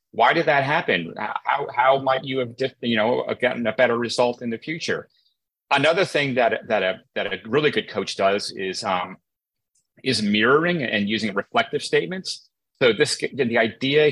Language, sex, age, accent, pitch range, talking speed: English, male, 30-49, American, 105-140 Hz, 180 wpm